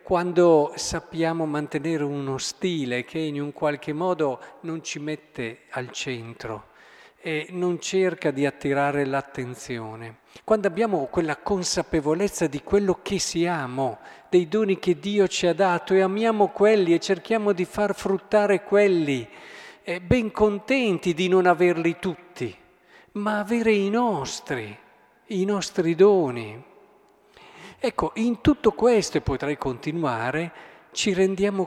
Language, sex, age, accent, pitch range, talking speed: Italian, male, 50-69, native, 140-190 Hz, 125 wpm